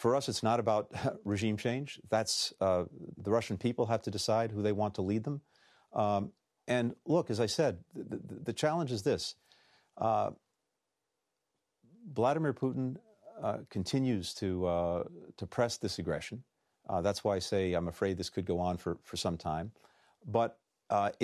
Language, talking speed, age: English, 175 wpm, 40-59